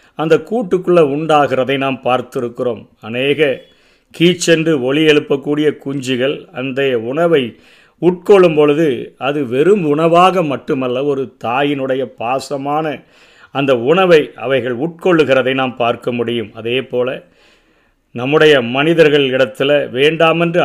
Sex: male